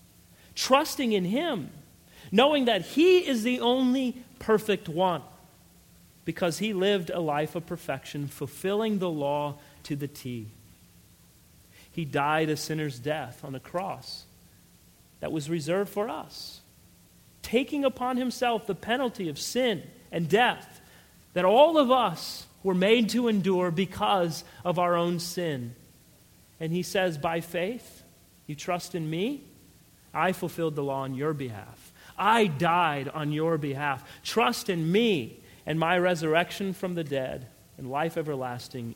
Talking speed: 140 wpm